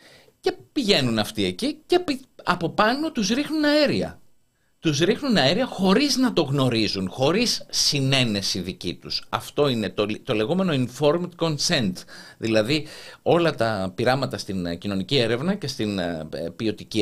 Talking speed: 130 wpm